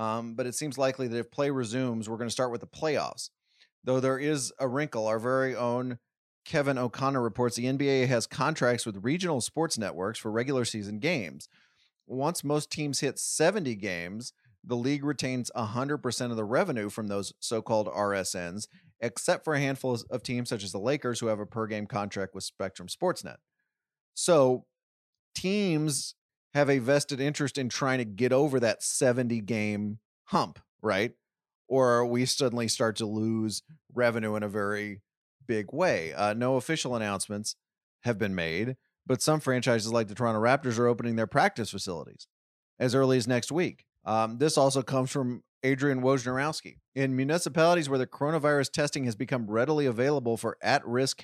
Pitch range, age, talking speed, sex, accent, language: 110-140 Hz, 30-49, 170 wpm, male, American, English